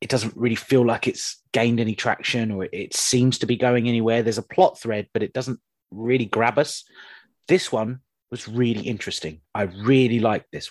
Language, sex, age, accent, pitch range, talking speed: English, male, 30-49, British, 105-125 Hz, 195 wpm